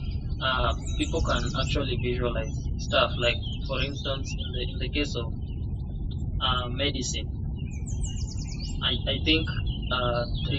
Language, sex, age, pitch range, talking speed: English, male, 20-39, 75-90 Hz, 120 wpm